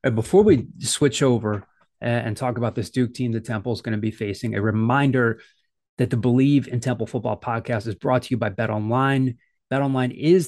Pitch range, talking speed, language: 115-135 Hz, 205 wpm, English